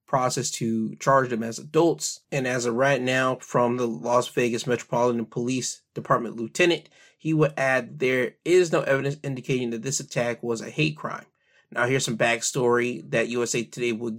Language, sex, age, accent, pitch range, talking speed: English, male, 20-39, American, 120-150 Hz, 180 wpm